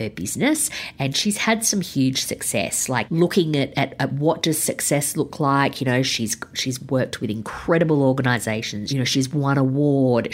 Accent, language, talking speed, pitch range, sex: Australian, English, 175 wpm, 120-150 Hz, female